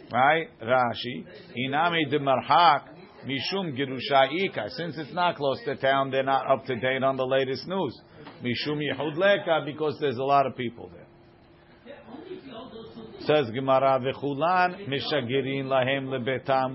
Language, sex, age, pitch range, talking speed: English, male, 50-69, 125-160 Hz, 110 wpm